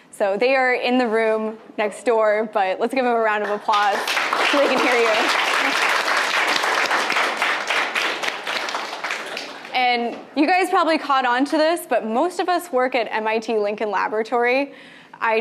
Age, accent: 10-29, American